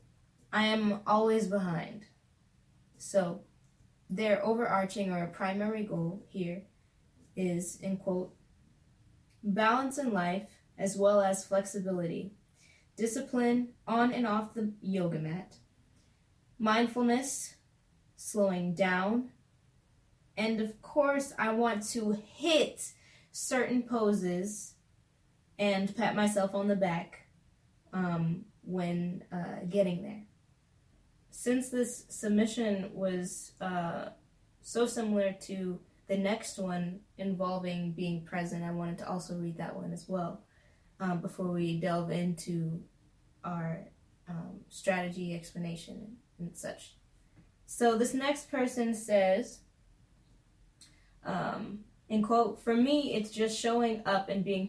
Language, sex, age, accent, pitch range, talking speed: English, female, 20-39, American, 180-220 Hz, 110 wpm